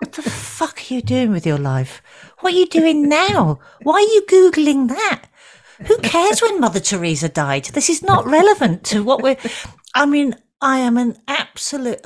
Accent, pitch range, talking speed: British, 170-250 Hz, 190 wpm